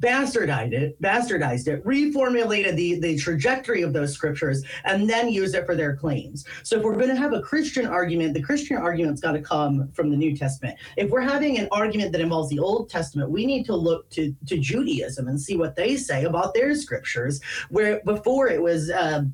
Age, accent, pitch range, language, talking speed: 30-49, American, 150-210 Hz, English, 210 wpm